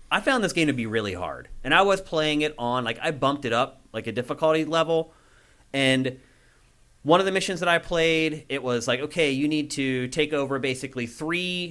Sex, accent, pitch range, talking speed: male, American, 125-160 Hz, 215 wpm